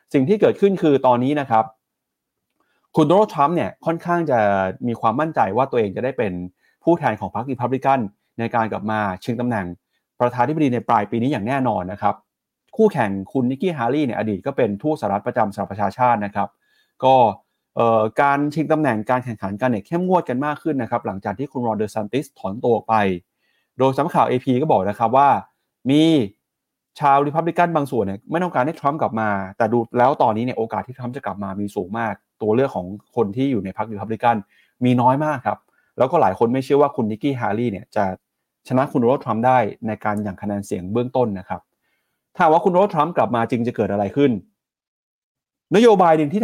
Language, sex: Thai, male